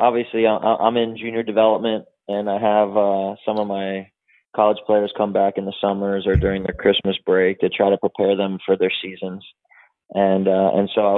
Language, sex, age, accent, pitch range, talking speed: English, male, 20-39, American, 100-110 Hz, 205 wpm